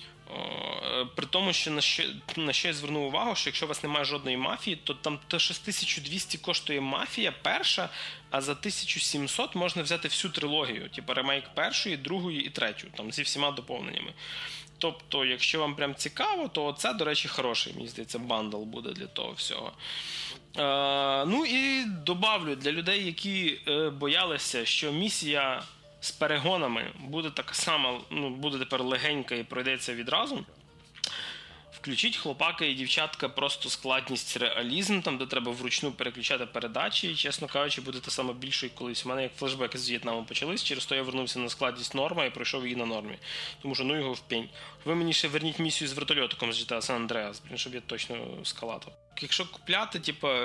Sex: male